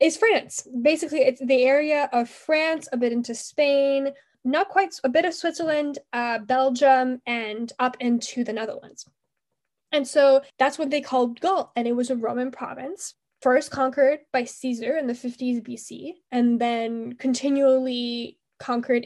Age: 10-29